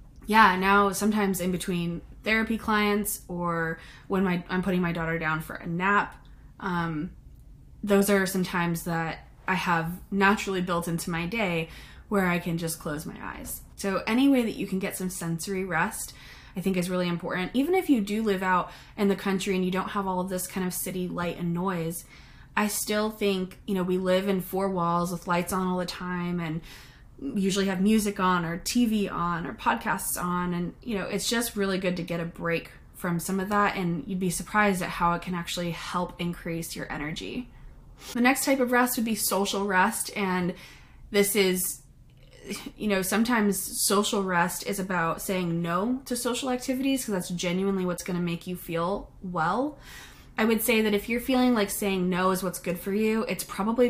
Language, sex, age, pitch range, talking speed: English, female, 20-39, 175-205 Hz, 200 wpm